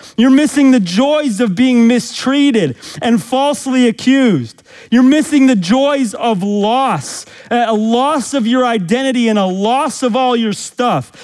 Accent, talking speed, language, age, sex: American, 150 wpm, English, 40-59, male